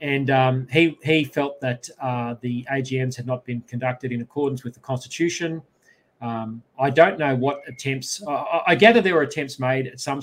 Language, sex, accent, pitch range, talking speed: English, male, Australian, 125-145 Hz, 195 wpm